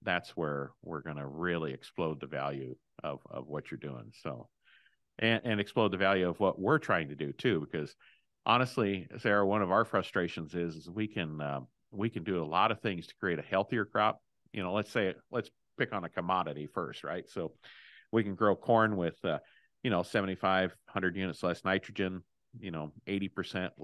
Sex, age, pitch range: male, 50-69, 85-100 Hz